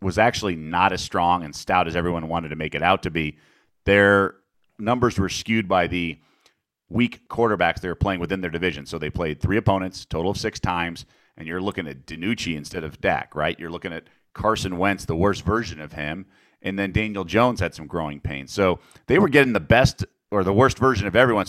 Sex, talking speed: male, 220 wpm